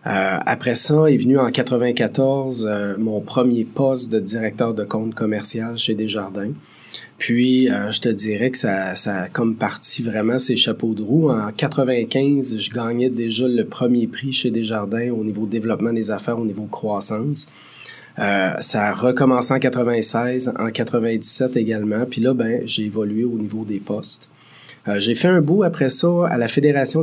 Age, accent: 30-49, Canadian